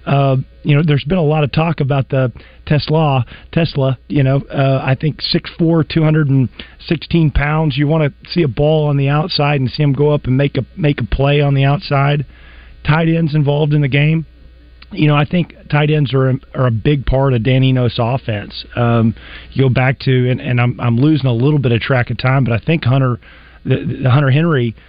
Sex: male